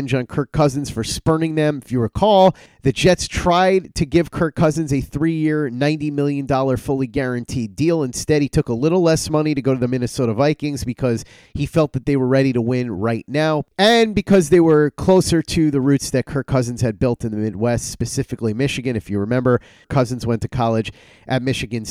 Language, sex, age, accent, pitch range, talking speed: English, male, 30-49, American, 125-160 Hz, 205 wpm